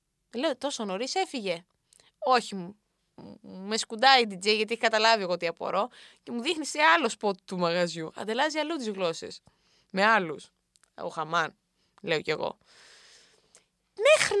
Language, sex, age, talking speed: Greek, female, 20-39, 145 wpm